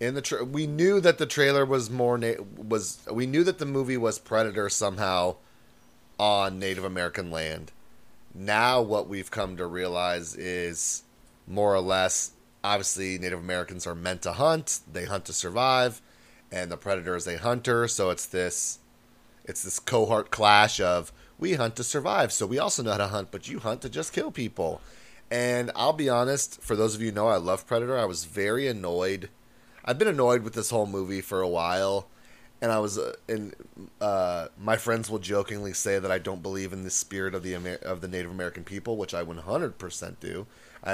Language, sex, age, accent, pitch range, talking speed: English, male, 30-49, American, 90-125 Hz, 200 wpm